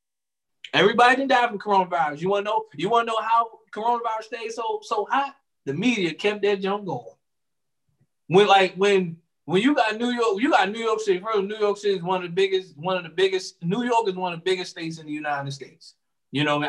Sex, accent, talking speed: male, American, 240 wpm